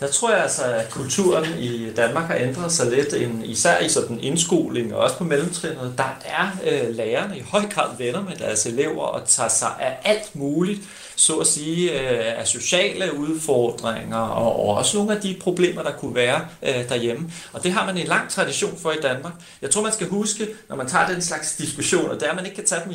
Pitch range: 125-185 Hz